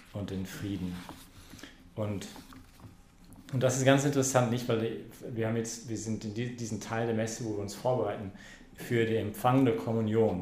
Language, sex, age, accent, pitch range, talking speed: English, male, 40-59, German, 100-120 Hz, 175 wpm